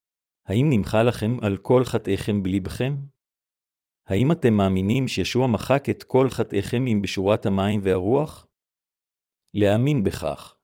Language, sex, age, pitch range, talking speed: Hebrew, male, 50-69, 100-125 Hz, 120 wpm